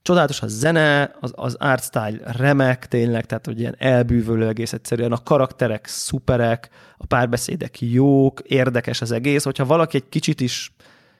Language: Hungarian